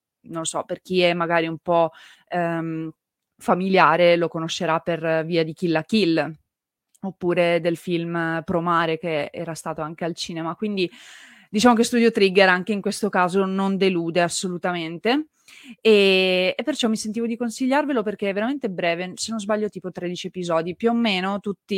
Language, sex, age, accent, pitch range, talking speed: Italian, female, 20-39, native, 165-190 Hz, 170 wpm